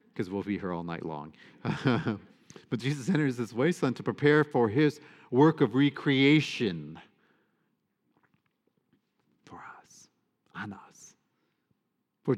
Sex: male